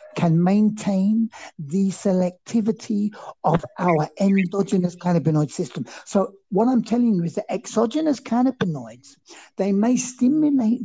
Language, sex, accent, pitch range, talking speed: English, male, British, 165-210 Hz, 115 wpm